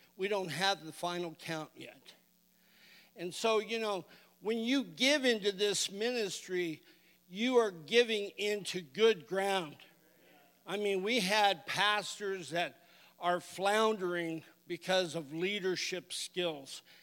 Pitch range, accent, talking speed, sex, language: 170-210 Hz, American, 125 wpm, male, English